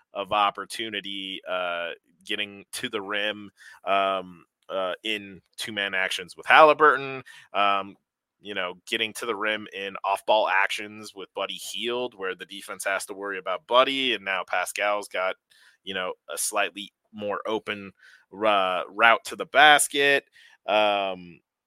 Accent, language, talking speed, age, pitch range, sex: American, English, 140 wpm, 20-39, 100-120 Hz, male